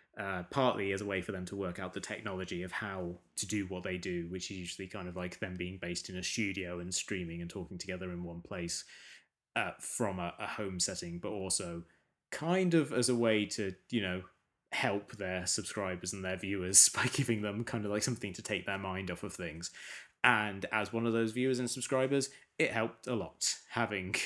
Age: 20-39